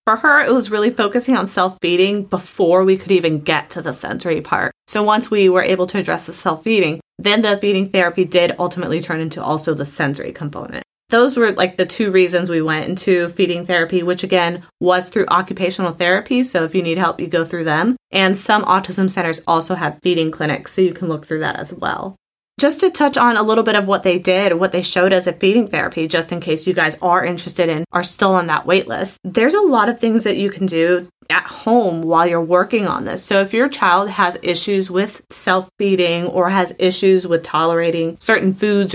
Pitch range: 170-205 Hz